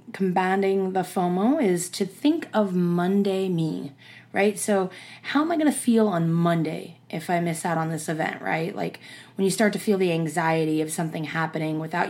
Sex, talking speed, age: female, 195 wpm, 20-39